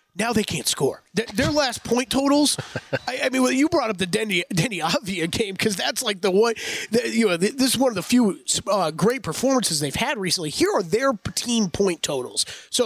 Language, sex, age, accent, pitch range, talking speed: English, male, 30-49, American, 180-235 Hz, 210 wpm